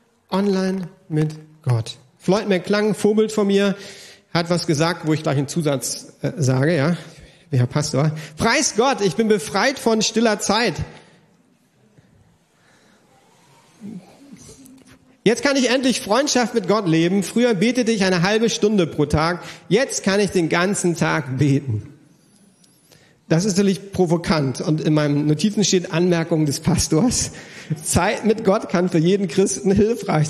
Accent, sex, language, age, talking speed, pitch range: German, male, German, 40-59, 145 wpm, 155-205 Hz